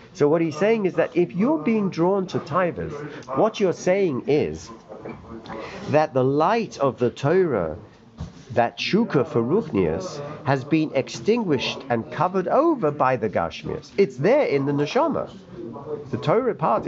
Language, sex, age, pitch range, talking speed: English, male, 50-69, 130-195 Hz, 155 wpm